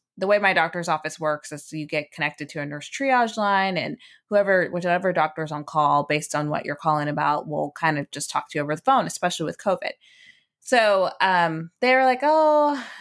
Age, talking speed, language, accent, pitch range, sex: 20-39, 210 wpm, English, American, 160-225 Hz, female